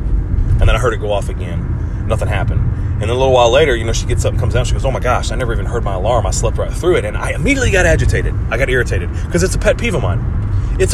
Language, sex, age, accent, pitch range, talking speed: English, male, 30-49, American, 100-120 Hz, 315 wpm